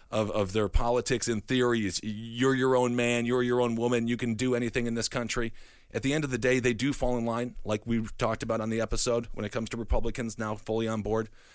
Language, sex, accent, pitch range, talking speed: English, male, American, 110-125 Hz, 250 wpm